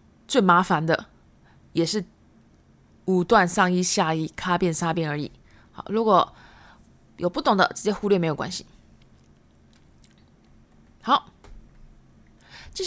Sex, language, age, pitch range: female, Japanese, 20-39, 180-245 Hz